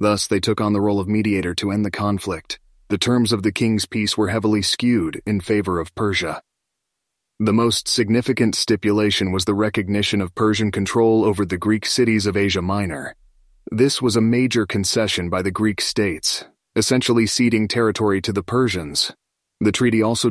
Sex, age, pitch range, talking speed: male, 30-49, 95-110 Hz, 175 wpm